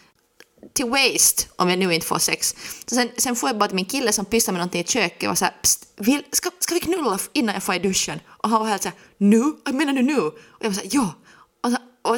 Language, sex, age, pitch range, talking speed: Swedish, female, 20-39, 180-245 Hz, 240 wpm